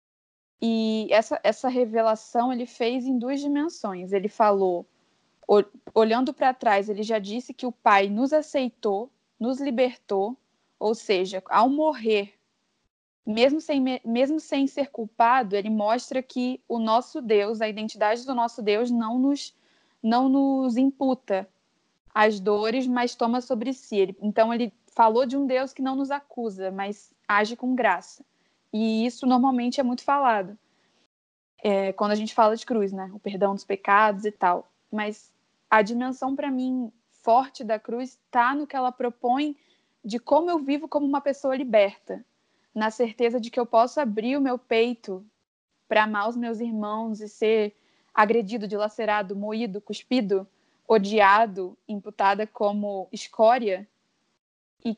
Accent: Brazilian